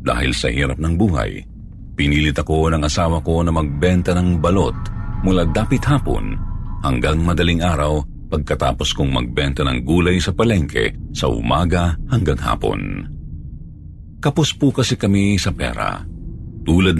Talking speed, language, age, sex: 130 wpm, Filipino, 50-69, male